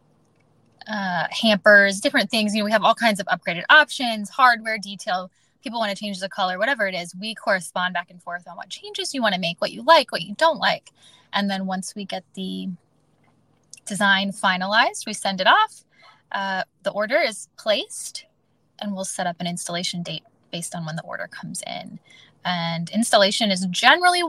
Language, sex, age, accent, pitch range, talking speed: English, female, 20-39, American, 185-225 Hz, 195 wpm